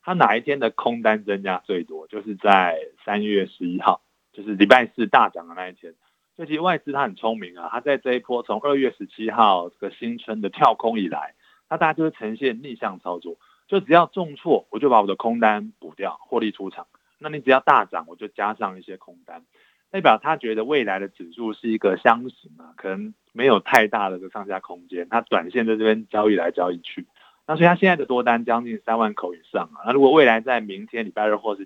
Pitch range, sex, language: 100-130 Hz, male, Chinese